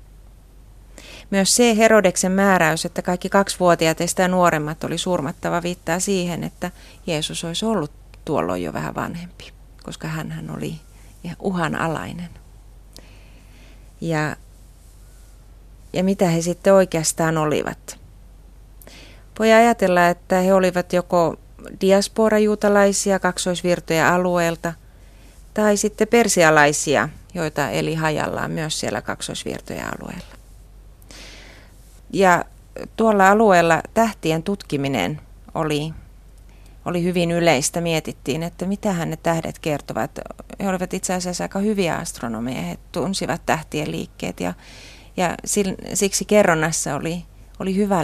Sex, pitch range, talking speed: female, 155-195 Hz, 105 wpm